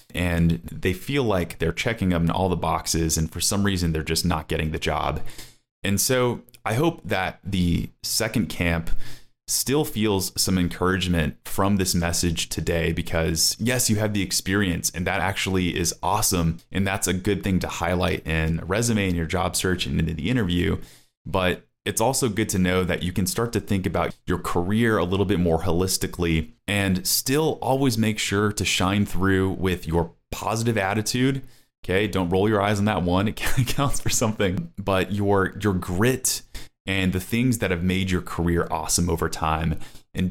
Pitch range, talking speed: 85-105 Hz, 190 wpm